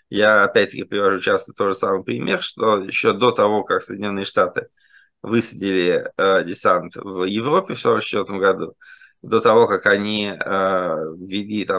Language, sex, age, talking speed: Russian, male, 20-39, 150 wpm